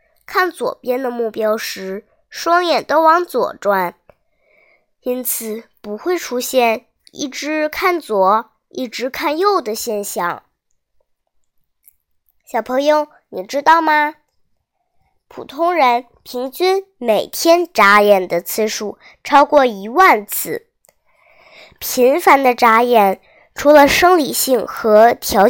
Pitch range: 215-310 Hz